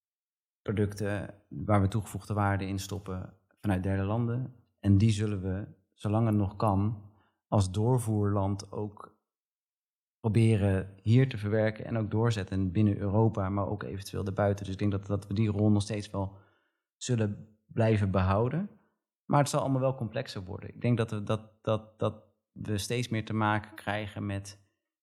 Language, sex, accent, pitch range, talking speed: Dutch, male, Dutch, 100-115 Hz, 165 wpm